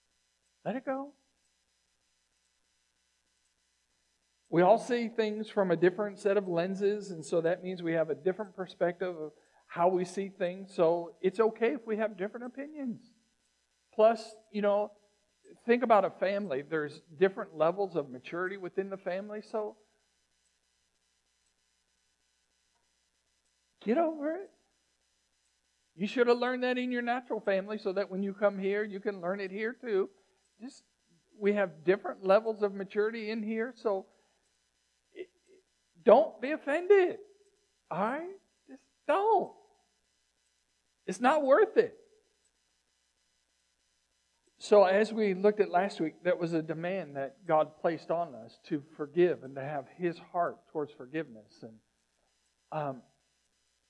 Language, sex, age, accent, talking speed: English, male, 50-69, American, 135 wpm